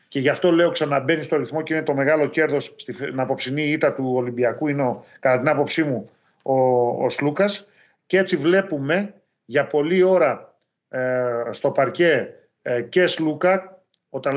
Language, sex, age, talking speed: Greek, male, 40-59, 165 wpm